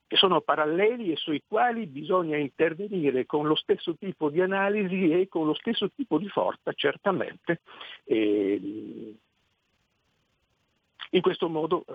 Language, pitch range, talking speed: Italian, 140-210 Hz, 130 wpm